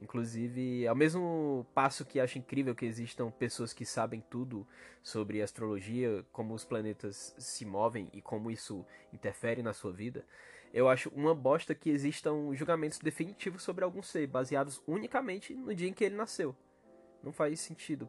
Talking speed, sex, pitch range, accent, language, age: 165 wpm, male, 120-185 Hz, Brazilian, Portuguese, 20-39